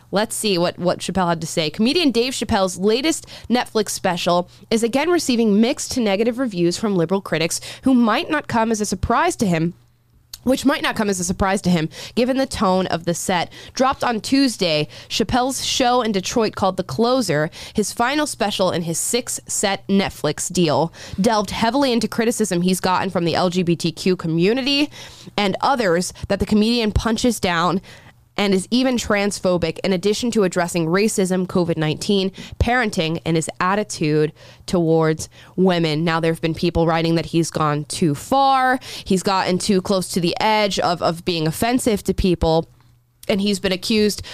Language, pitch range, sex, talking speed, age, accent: English, 170-230 Hz, female, 175 wpm, 20-39, American